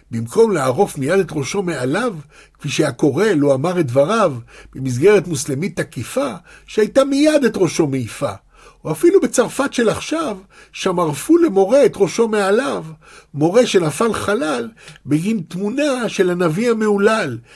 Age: 60-79